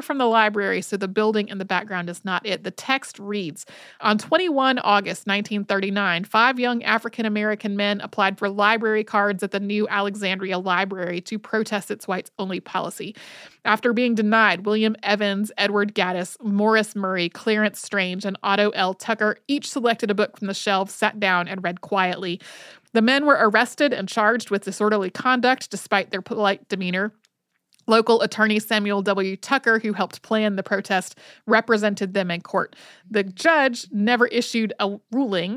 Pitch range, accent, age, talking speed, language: 200-245 Hz, American, 30-49, 165 wpm, English